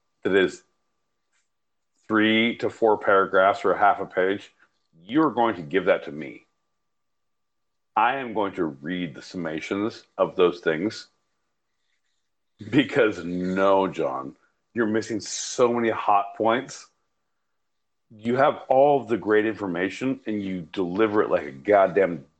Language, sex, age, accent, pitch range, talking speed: English, male, 50-69, American, 100-140 Hz, 135 wpm